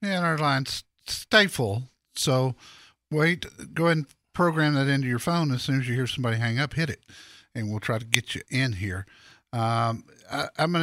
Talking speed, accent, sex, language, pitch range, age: 205 wpm, American, male, English, 120-150 Hz, 50-69